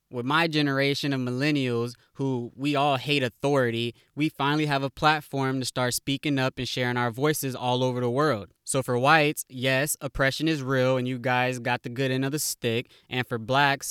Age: 20-39